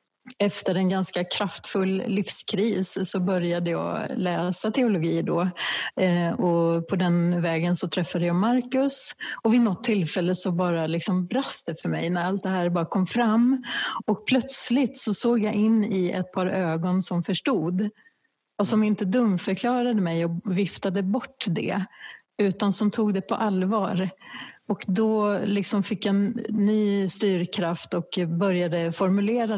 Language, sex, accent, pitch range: Swedish, female, native, 180-210 Hz